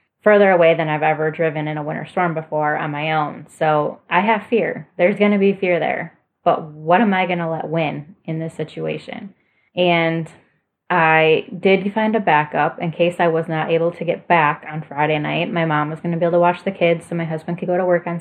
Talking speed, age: 235 wpm, 10-29